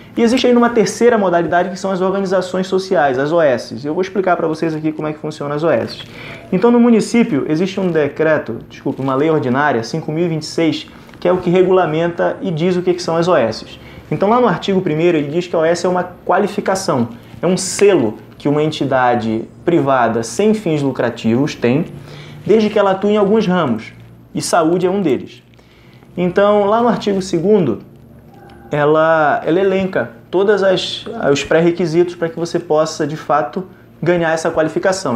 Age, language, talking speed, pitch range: 20-39, Portuguese, 180 wpm, 140-185 Hz